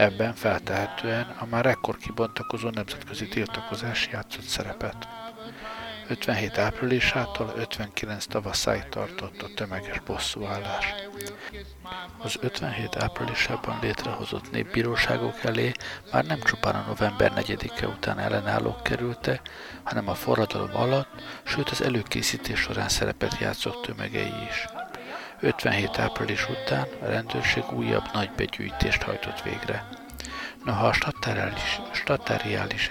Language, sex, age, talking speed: Hungarian, male, 60-79, 110 wpm